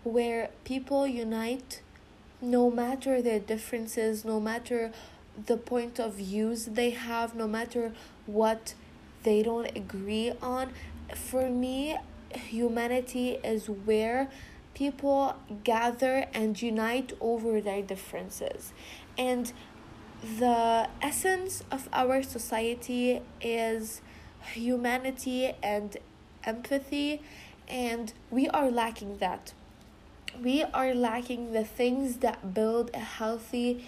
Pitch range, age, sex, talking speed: 225-255 Hz, 20-39, female, 105 wpm